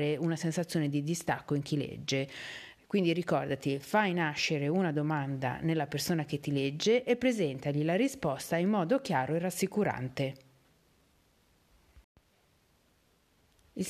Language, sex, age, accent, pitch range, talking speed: Italian, female, 40-59, native, 150-195 Hz, 120 wpm